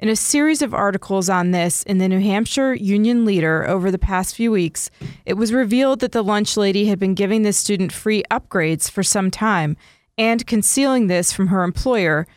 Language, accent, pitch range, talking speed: English, American, 180-225 Hz, 200 wpm